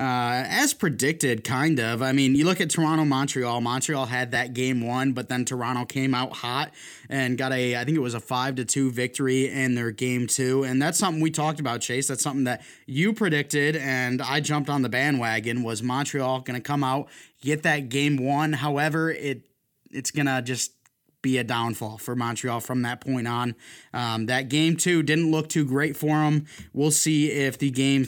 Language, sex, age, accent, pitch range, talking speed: English, male, 20-39, American, 125-150 Hz, 205 wpm